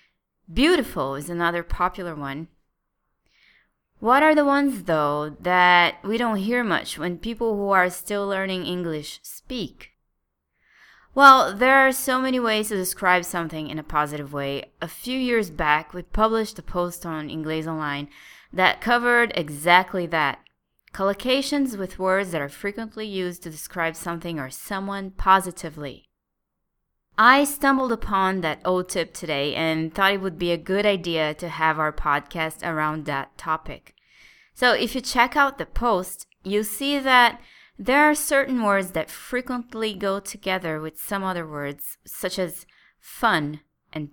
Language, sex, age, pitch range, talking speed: English, female, 20-39, 160-235 Hz, 150 wpm